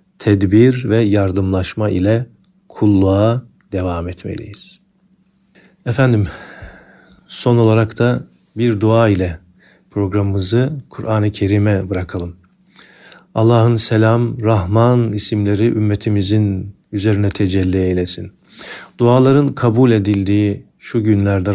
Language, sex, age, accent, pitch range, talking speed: Turkish, male, 50-69, native, 100-120 Hz, 85 wpm